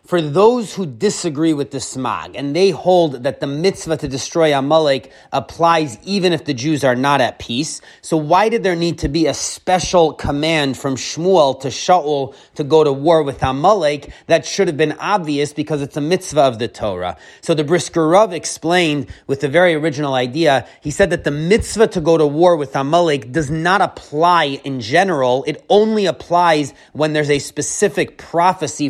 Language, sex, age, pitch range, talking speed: English, male, 30-49, 140-175 Hz, 185 wpm